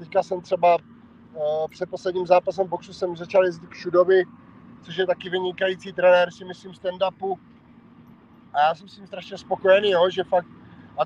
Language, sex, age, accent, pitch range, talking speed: Czech, male, 30-49, native, 175-200 Hz, 175 wpm